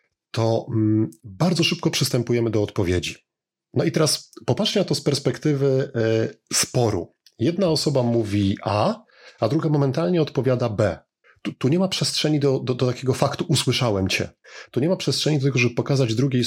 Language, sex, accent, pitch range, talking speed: Polish, male, native, 110-145 Hz, 165 wpm